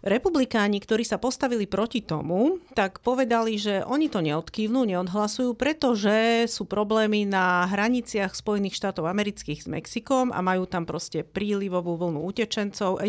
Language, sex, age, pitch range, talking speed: Slovak, female, 40-59, 185-235 Hz, 140 wpm